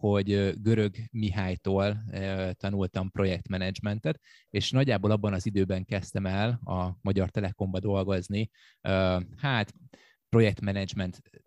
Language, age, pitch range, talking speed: Hungarian, 20-39, 95-125 Hz, 95 wpm